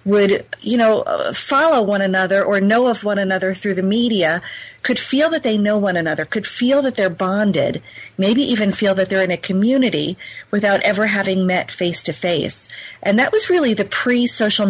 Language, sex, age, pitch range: English, female, 40-59, 185-220 Hz